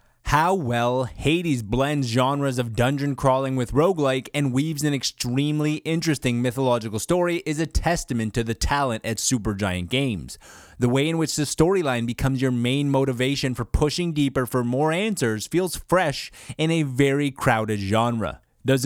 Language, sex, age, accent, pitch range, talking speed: English, male, 20-39, American, 120-150 Hz, 160 wpm